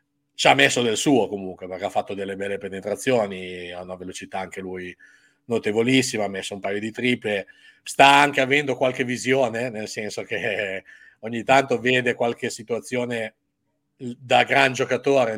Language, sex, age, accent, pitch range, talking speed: Italian, male, 40-59, native, 95-125 Hz, 155 wpm